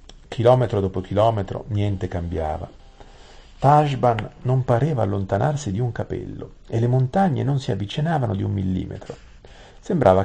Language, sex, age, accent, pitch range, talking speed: Italian, male, 50-69, native, 90-115 Hz, 130 wpm